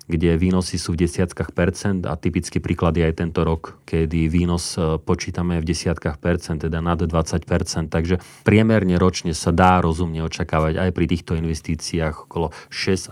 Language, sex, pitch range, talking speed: Slovak, male, 85-95 Hz, 165 wpm